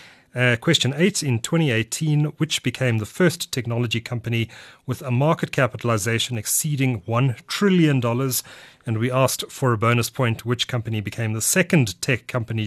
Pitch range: 115-145 Hz